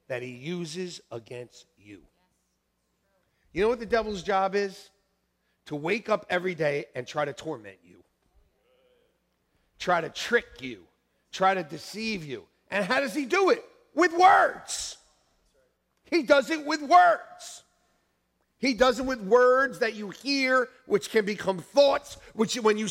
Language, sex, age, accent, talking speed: English, male, 50-69, American, 150 wpm